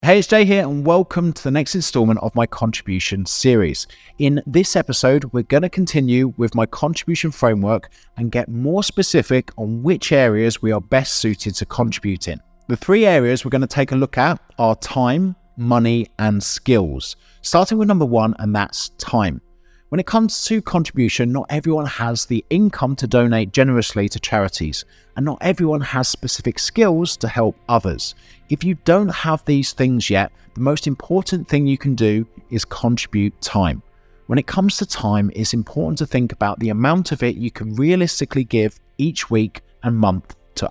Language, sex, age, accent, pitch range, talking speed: English, male, 30-49, British, 110-160 Hz, 185 wpm